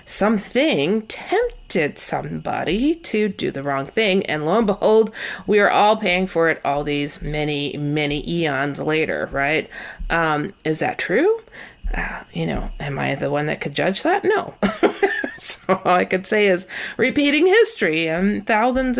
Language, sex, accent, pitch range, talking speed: English, female, American, 160-245 Hz, 160 wpm